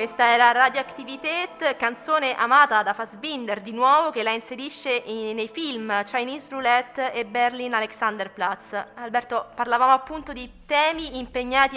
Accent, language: native, Italian